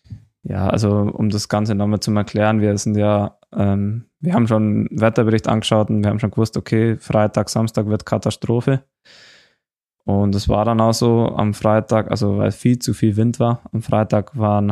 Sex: male